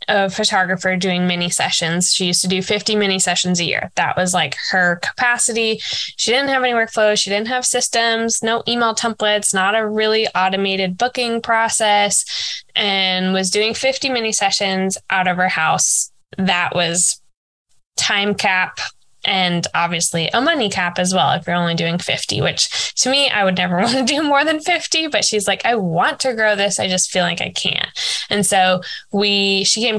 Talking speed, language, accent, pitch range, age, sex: 190 wpm, English, American, 180-225 Hz, 10-29, female